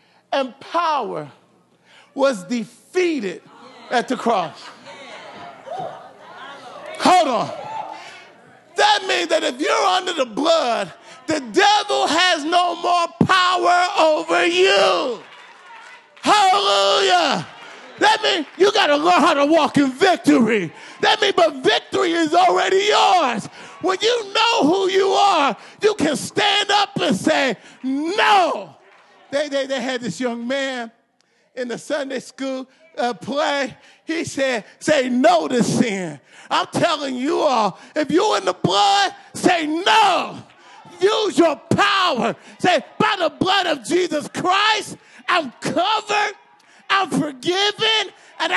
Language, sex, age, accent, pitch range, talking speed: English, male, 40-59, American, 265-385 Hz, 125 wpm